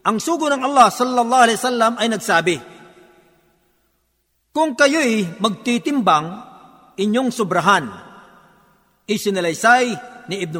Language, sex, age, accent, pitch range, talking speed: Filipino, male, 50-69, native, 200-245 Hz, 85 wpm